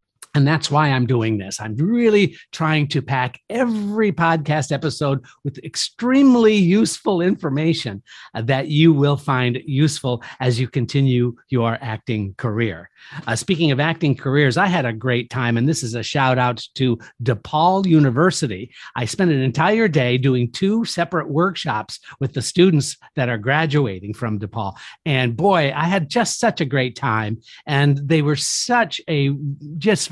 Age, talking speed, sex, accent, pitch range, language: 50-69, 160 wpm, male, American, 125-180 Hz, English